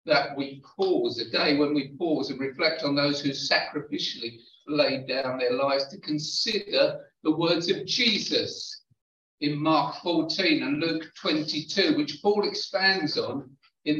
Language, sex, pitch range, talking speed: English, male, 145-210 Hz, 150 wpm